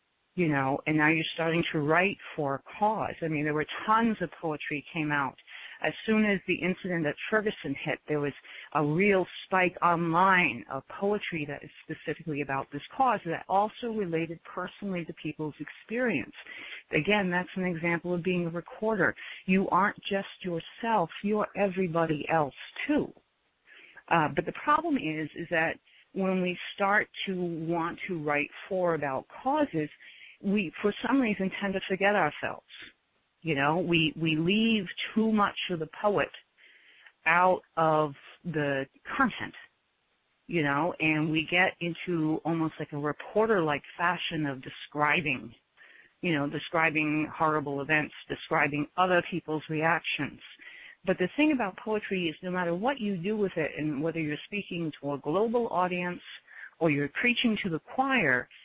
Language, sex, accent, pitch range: English, female, American, 155-195 Hz